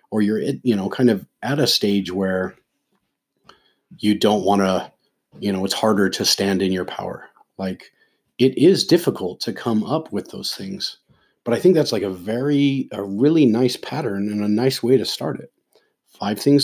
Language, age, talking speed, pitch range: English, 30-49, 190 wpm, 100-130 Hz